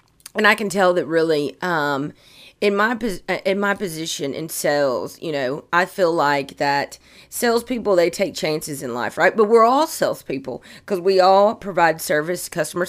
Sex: female